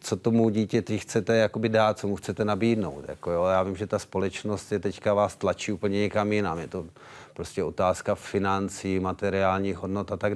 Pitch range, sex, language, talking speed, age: 95-110 Hz, male, Czech, 195 wpm, 40-59